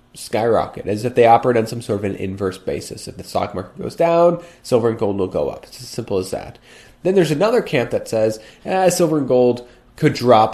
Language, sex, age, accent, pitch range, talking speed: English, male, 30-49, American, 110-145 Hz, 235 wpm